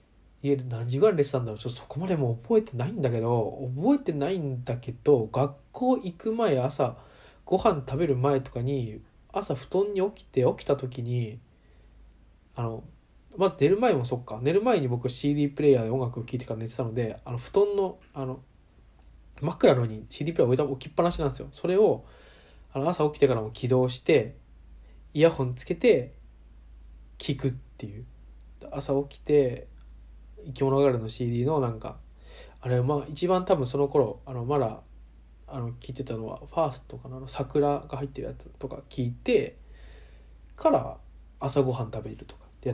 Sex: male